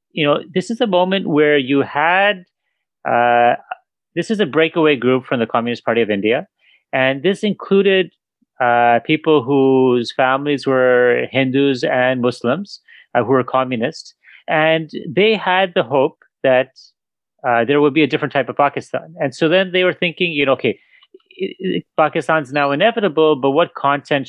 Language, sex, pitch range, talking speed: English, male, 125-170 Hz, 165 wpm